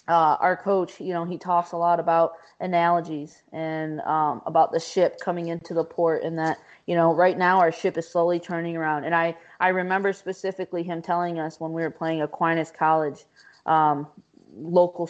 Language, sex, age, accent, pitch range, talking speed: English, female, 20-39, American, 160-180 Hz, 190 wpm